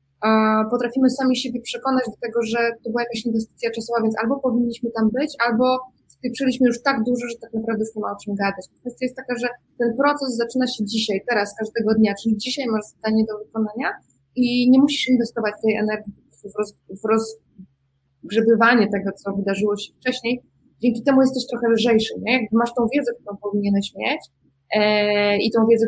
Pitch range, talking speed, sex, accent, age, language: 215-245 Hz, 180 wpm, female, native, 20-39, Polish